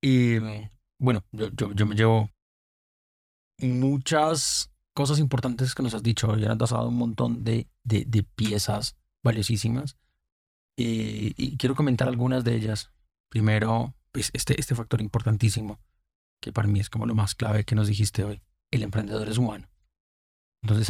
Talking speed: 155 wpm